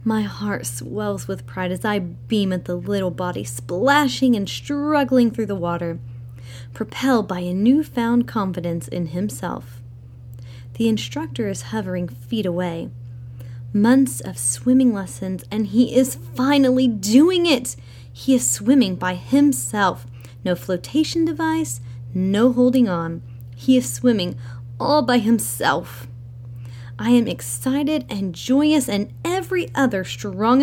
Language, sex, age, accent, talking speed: English, female, 30-49, American, 130 wpm